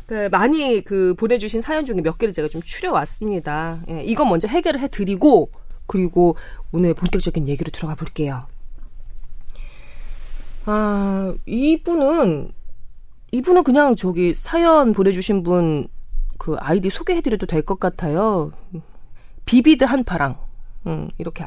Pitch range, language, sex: 165-250 Hz, Korean, female